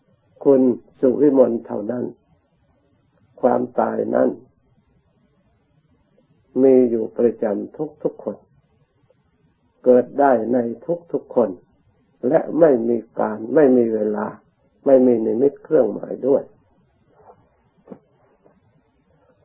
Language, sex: Thai, male